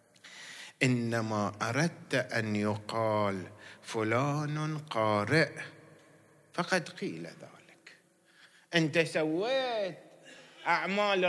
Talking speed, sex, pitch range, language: 65 wpm, male, 135-195 Hz, Arabic